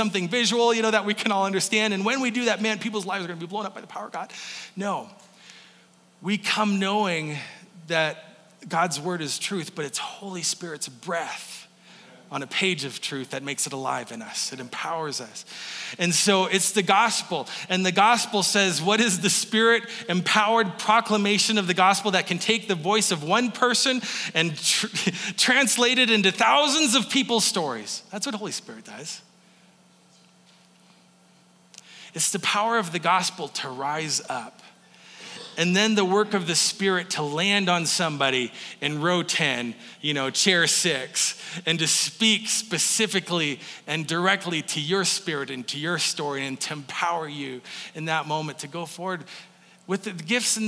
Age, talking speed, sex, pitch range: 30-49, 175 wpm, male, 160-215 Hz